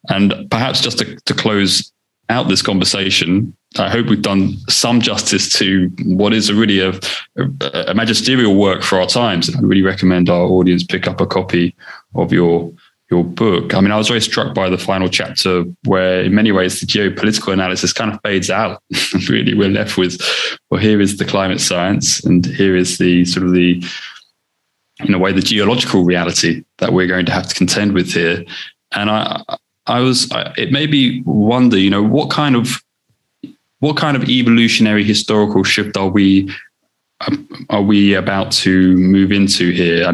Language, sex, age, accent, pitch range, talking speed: English, male, 20-39, British, 95-110 Hz, 180 wpm